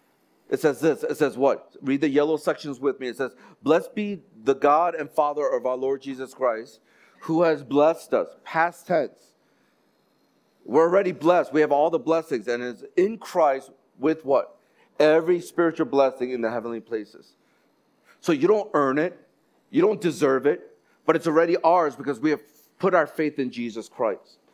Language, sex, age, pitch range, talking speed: English, male, 50-69, 140-180 Hz, 180 wpm